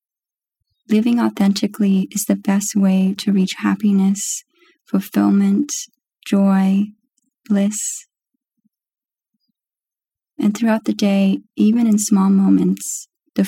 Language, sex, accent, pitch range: English, female, American, 185-225 Hz